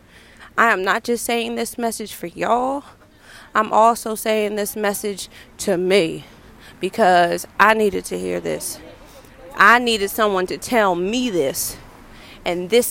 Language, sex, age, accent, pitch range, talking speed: English, female, 30-49, American, 180-225 Hz, 145 wpm